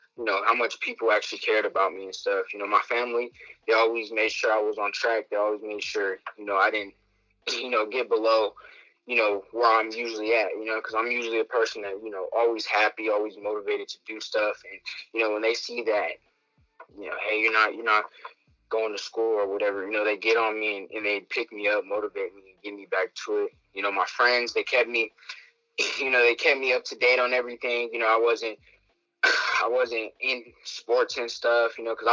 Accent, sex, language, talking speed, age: American, male, English, 235 wpm, 20-39